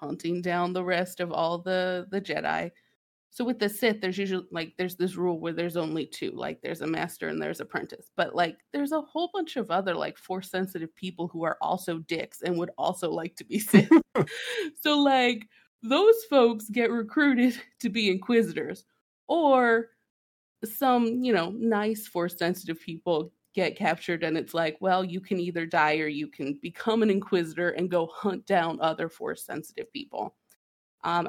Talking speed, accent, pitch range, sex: 180 wpm, American, 170-230 Hz, female